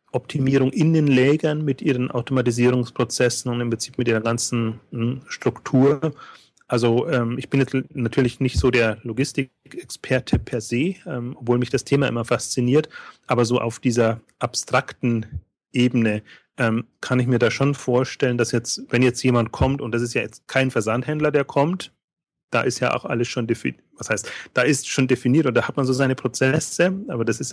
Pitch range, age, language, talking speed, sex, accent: 115-135 Hz, 30-49, German, 185 wpm, male, German